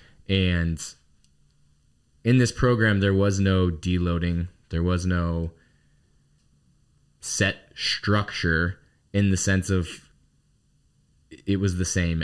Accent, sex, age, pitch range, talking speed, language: American, male, 20-39, 85-105 Hz, 105 wpm, English